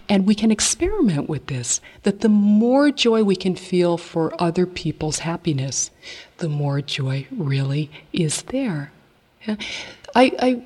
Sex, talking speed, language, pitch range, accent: female, 140 wpm, English, 155-205 Hz, American